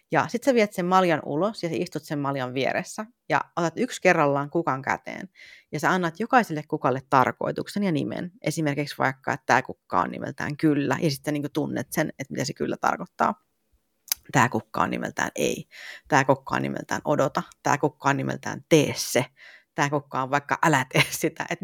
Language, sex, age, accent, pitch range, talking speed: Finnish, female, 30-49, native, 145-190 Hz, 190 wpm